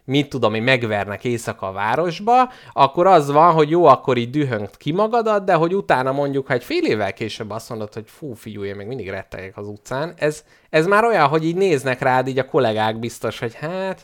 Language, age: Hungarian, 20-39